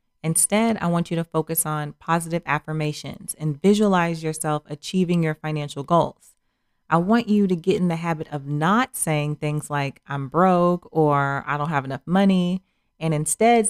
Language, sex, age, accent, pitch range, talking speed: English, female, 30-49, American, 150-185 Hz, 170 wpm